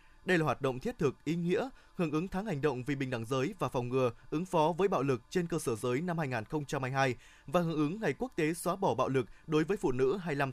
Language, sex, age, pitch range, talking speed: Vietnamese, male, 20-39, 140-190 Hz, 260 wpm